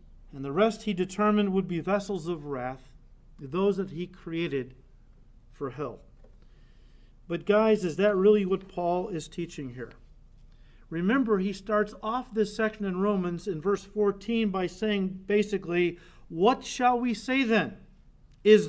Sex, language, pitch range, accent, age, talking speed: male, English, 155-210 Hz, American, 50-69, 150 wpm